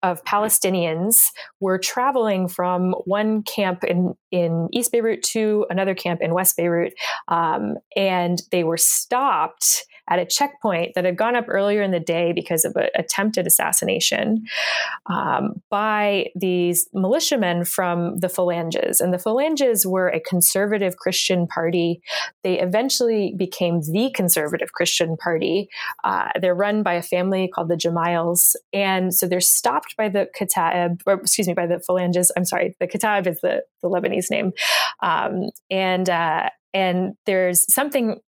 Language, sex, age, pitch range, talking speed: English, female, 20-39, 175-210 Hz, 150 wpm